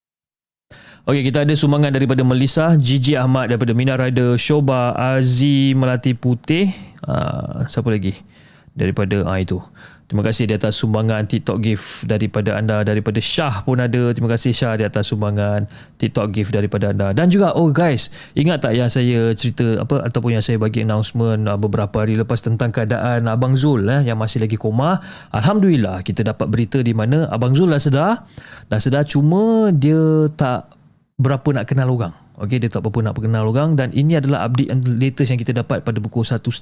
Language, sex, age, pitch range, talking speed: Malay, male, 20-39, 110-140 Hz, 175 wpm